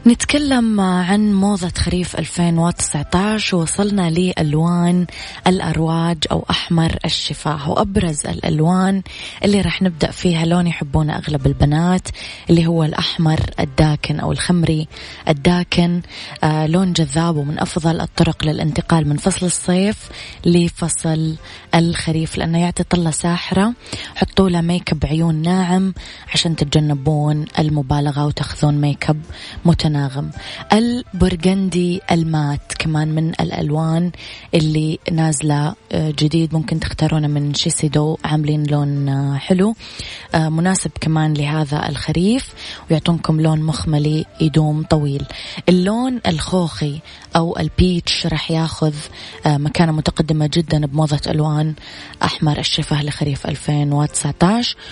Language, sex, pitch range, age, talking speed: Arabic, female, 150-175 Hz, 20-39, 105 wpm